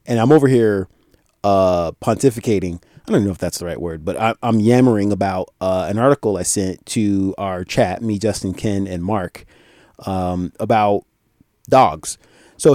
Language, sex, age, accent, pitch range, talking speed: English, male, 30-49, American, 100-125 Hz, 165 wpm